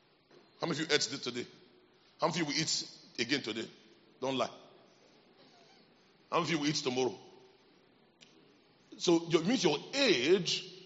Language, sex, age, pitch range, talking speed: English, male, 40-59, 175-255 Hz, 160 wpm